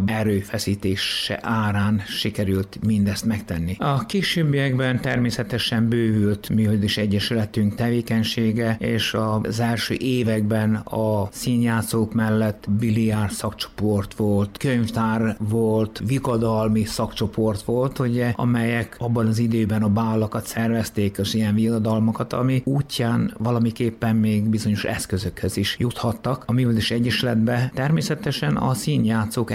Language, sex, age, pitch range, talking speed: Hungarian, male, 60-79, 105-120 Hz, 110 wpm